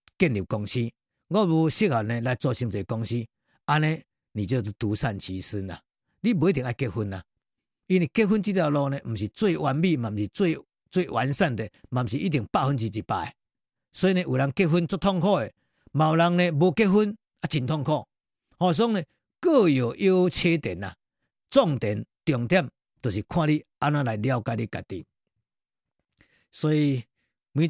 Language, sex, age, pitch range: Chinese, male, 50-69, 115-165 Hz